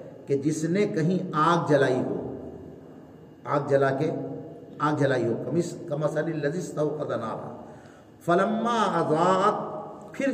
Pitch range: 140-195 Hz